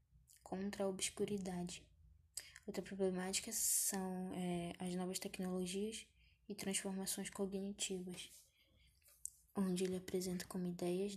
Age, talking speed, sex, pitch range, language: 10-29, 90 wpm, female, 180-195 Hz, Portuguese